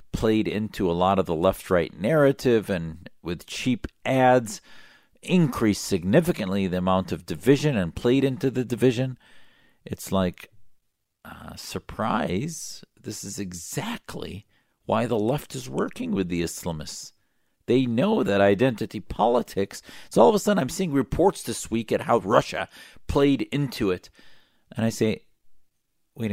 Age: 50-69